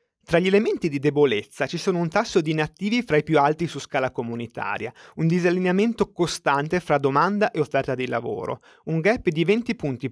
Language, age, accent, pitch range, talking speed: Italian, 30-49, native, 145-195 Hz, 190 wpm